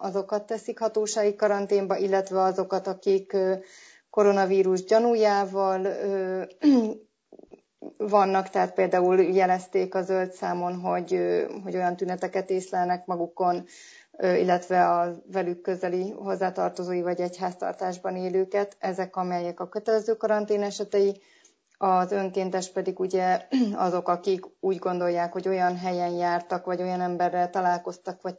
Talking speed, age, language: 110 wpm, 30-49, Hungarian